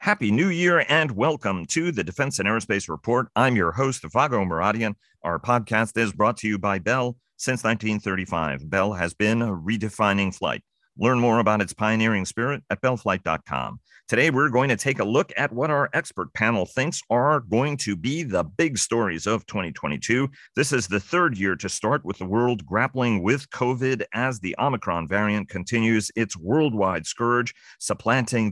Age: 40-59